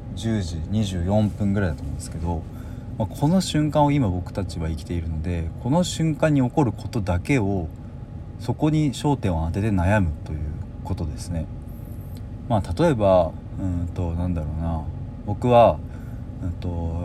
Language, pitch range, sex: Japanese, 85-115 Hz, male